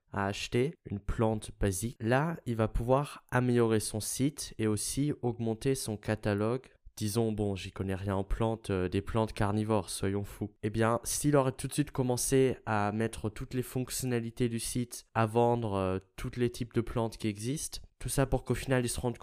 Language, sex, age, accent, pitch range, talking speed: French, male, 20-39, French, 105-125 Hz, 195 wpm